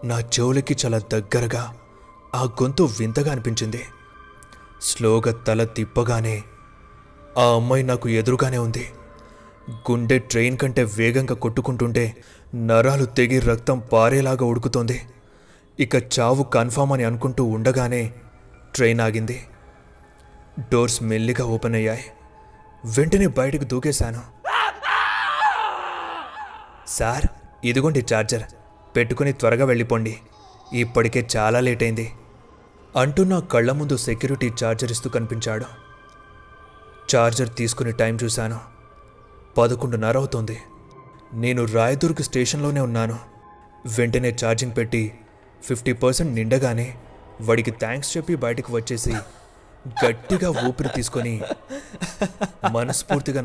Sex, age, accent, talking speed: male, 20-39, native, 95 wpm